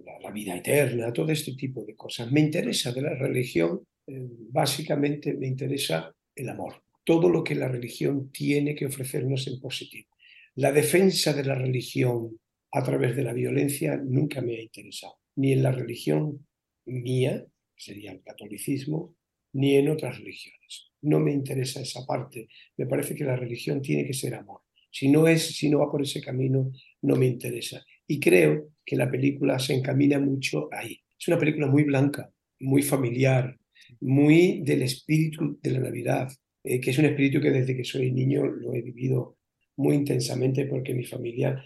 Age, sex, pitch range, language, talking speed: 50-69, male, 125-145 Hz, Spanish, 180 wpm